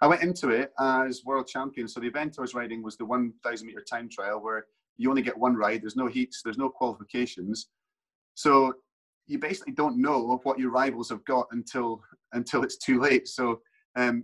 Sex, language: male, English